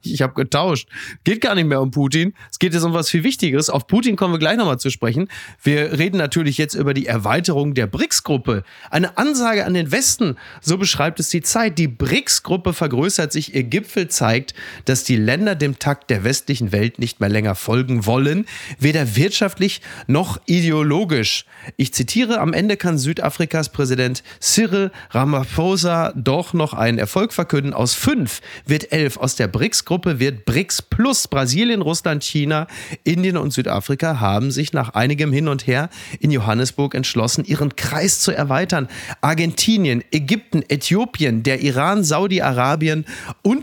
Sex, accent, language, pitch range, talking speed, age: male, German, German, 125-170 Hz, 160 wpm, 30-49